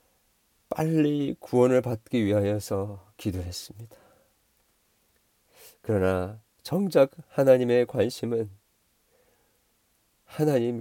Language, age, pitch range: Korean, 40-59, 105-130 Hz